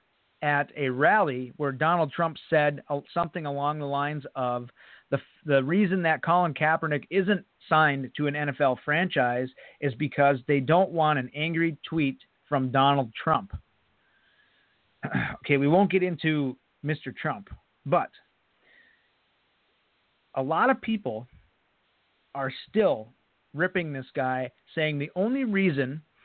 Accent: American